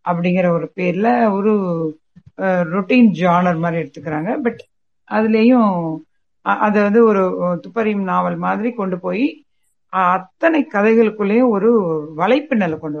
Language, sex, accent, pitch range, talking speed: Tamil, female, native, 175-225 Hz, 70 wpm